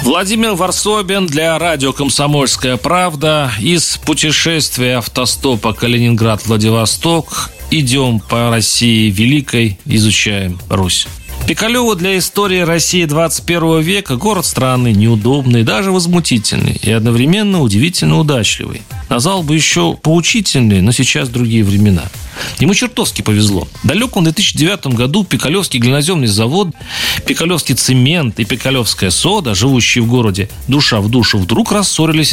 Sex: male